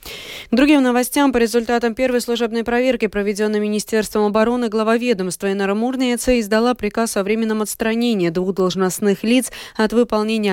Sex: female